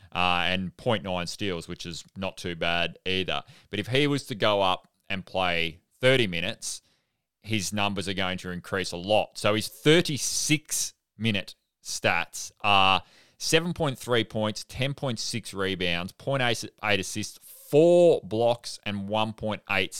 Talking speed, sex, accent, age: 130 wpm, male, Australian, 20-39